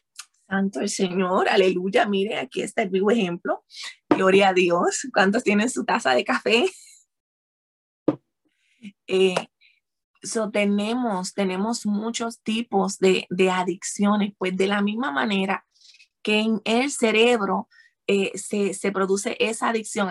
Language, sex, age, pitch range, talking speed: Spanish, female, 20-39, 195-225 Hz, 130 wpm